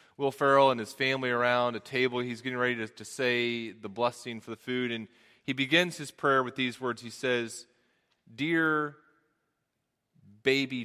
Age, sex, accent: 30-49, male, American